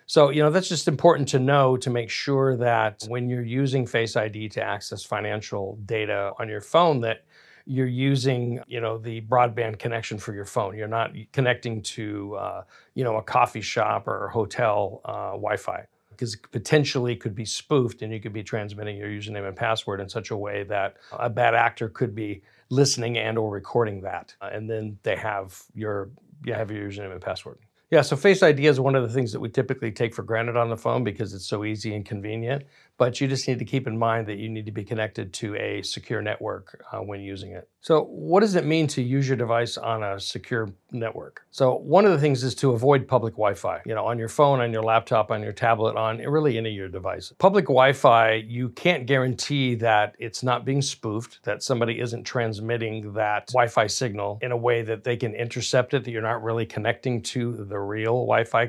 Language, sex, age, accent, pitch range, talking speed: English, male, 40-59, American, 110-130 Hz, 215 wpm